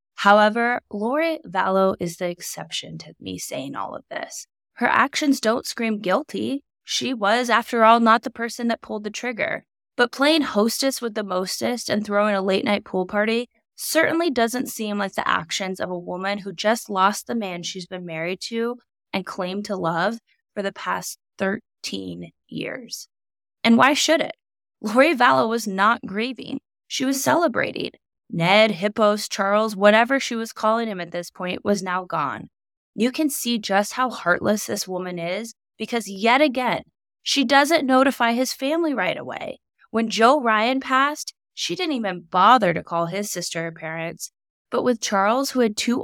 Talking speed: 175 wpm